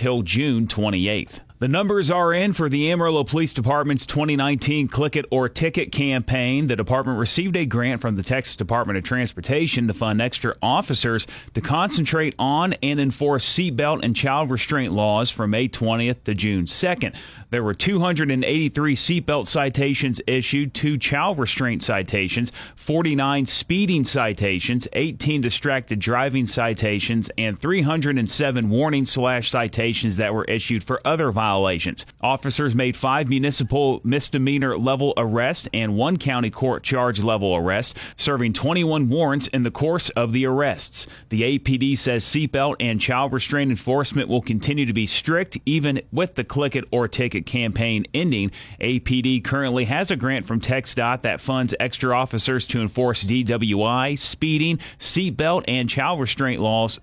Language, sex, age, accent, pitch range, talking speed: English, male, 30-49, American, 115-145 Hz, 150 wpm